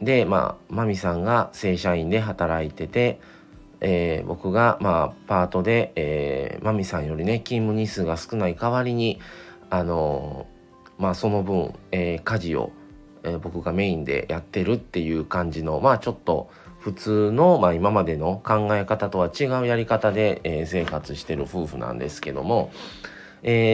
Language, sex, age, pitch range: Japanese, male, 40-59, 85-110 Hz